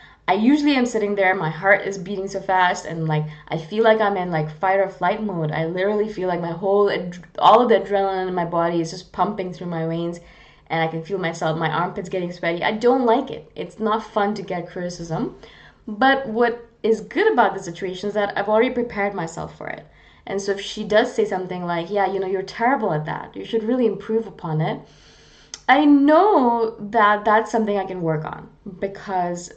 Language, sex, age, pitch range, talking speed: English, female, 20-39, 175-225 Hz, 215 wpm